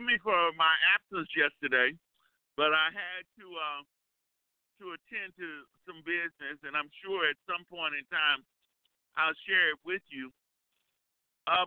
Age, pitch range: 50-69, 150-195 Hz